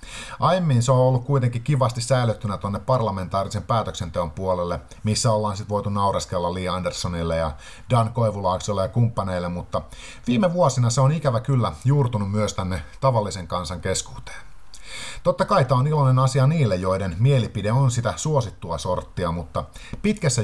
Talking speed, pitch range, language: 150 wpm, 95-130 Hz, Finnish